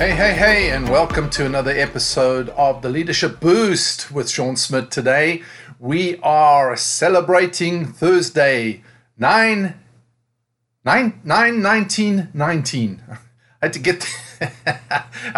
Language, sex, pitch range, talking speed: English, male, 125-180 Hz, 100 wpm